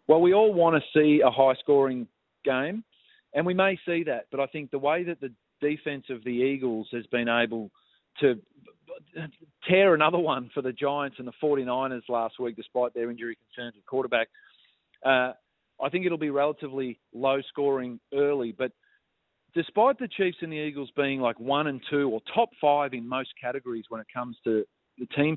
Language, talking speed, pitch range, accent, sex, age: English, 185 wpm, 125-150 Hz, Australian, male, 40-59